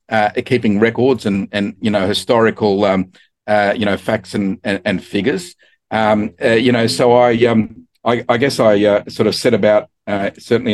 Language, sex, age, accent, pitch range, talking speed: English, male, 50-69, Australian, 100-115 Hz, 195 wpm